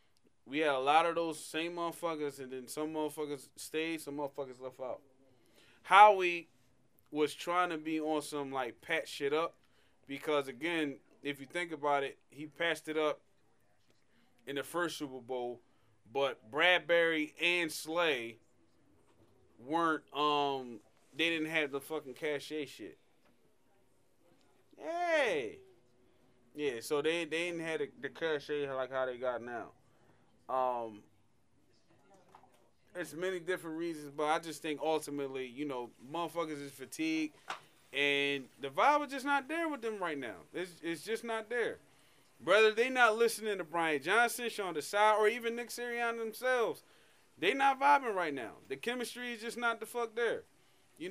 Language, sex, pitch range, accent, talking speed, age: English, male, 145-215 Hz, American, 155 wpm, 20-39